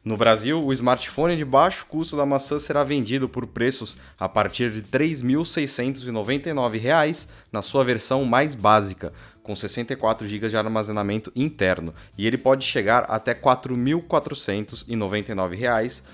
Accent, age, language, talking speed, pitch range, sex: Brazilian, 20-39, Portuguese, 140 wpm, 110-150 Hz, male